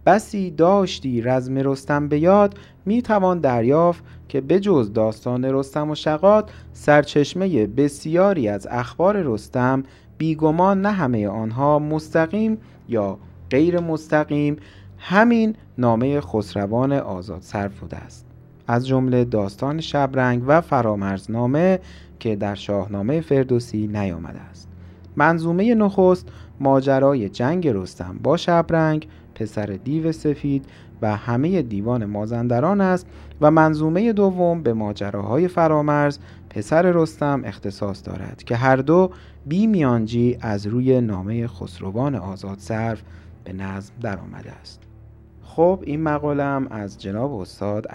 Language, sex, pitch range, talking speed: Persian, male, 105-155 Hz, 115 wpm